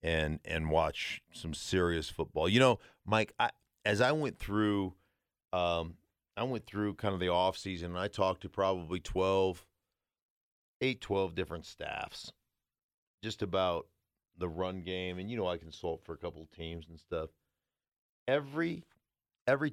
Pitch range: 80-95 Hz